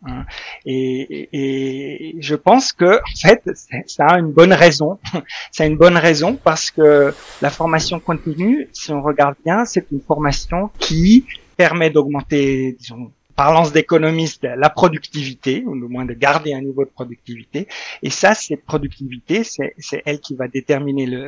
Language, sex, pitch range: French, male, 145-180 Hz